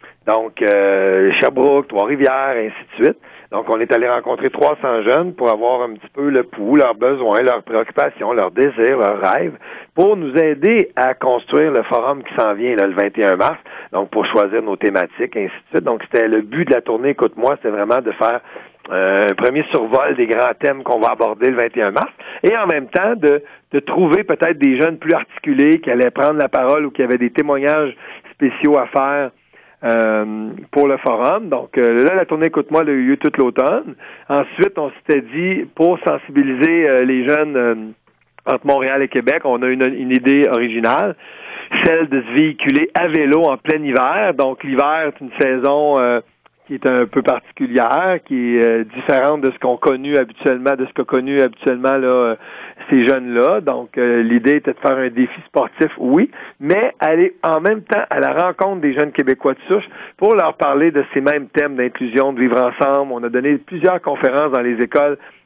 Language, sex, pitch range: French, male, 125-150 Hz